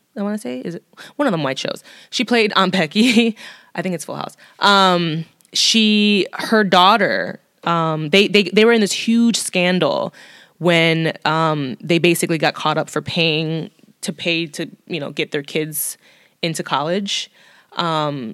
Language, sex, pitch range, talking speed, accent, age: English, female, 160-195 Hz, 175 wpm, American, 20-39